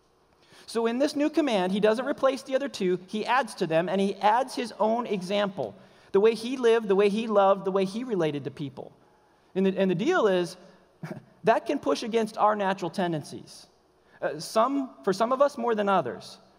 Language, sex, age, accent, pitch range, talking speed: English, male, 40-59, American, 170-220 Hz, 205 wpm